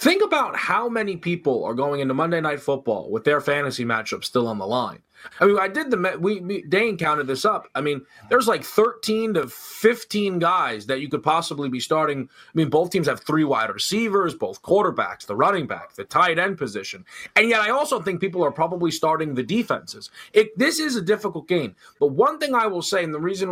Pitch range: 145-215 Hz